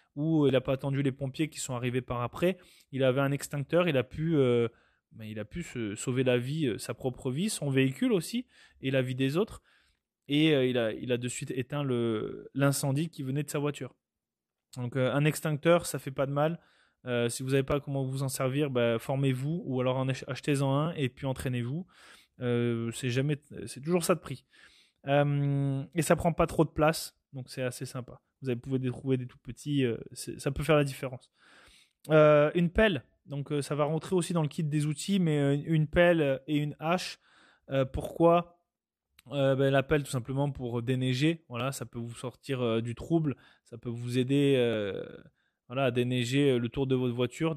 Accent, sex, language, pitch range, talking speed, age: French, male, French, 125-150 Hz, 205 wpm, 20-39